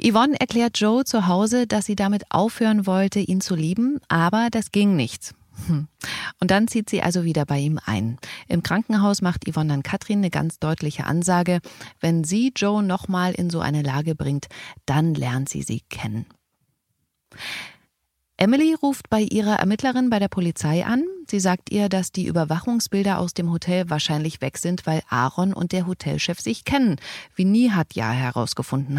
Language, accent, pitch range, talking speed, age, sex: German, German, 155-215 Hz, 170 wpm, 30-49, female